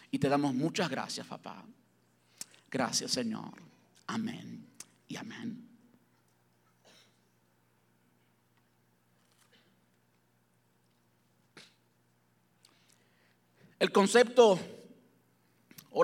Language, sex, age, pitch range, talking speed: Spanish, male, 50-69, 140-225 Hz, 50 wpm